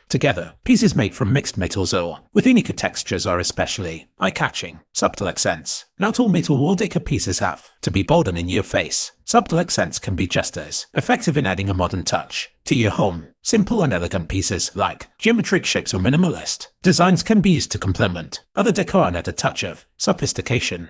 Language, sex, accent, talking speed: English, male, British, 190 wpm